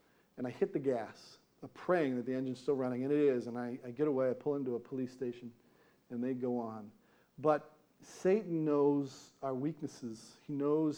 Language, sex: English, male